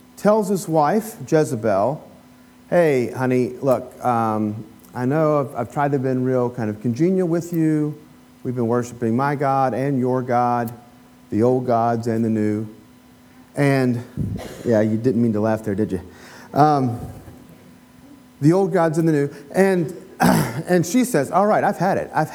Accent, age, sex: American, 40-59, male